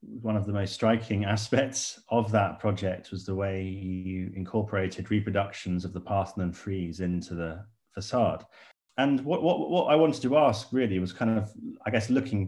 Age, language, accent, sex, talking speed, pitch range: 30-49, English, British, male, 180 wpm, 95-110 Hz